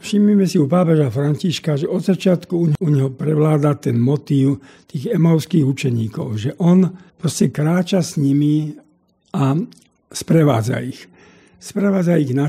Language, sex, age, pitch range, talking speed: Slovak, male, 60-79, 135-175 Hz, 145 wpm